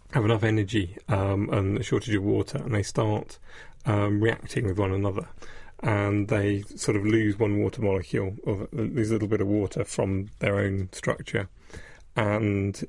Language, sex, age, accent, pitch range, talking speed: English, male, 30-49, British, 100-110 Hz, 180 wpm